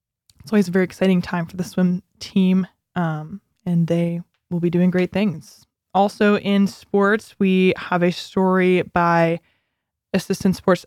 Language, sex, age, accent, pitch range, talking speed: English, female, 20-39, American, 175-205 Hz, 155 wpm